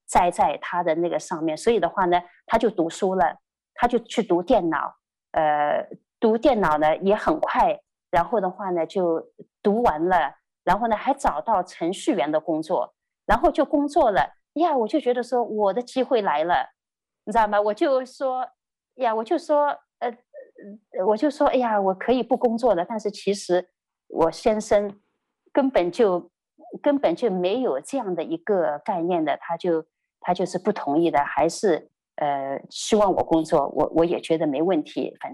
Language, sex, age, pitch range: Chinese, female, 30-49, 165-240 Hz